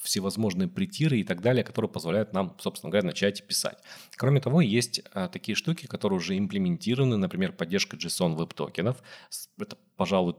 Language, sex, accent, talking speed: Russian, male, native, 145 wpm